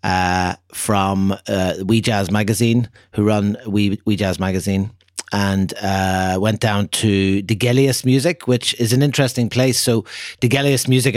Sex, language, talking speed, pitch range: male, English, 145 wpm, 95-120 Hz